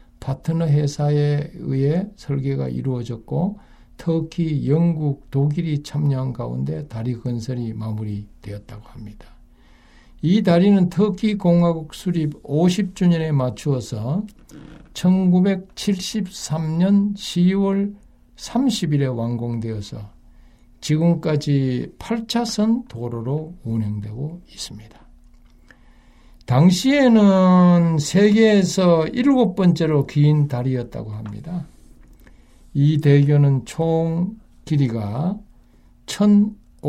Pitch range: 115-180 Hz